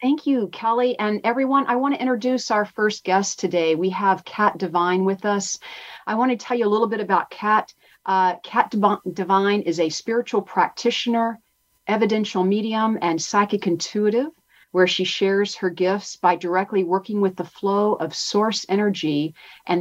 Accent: American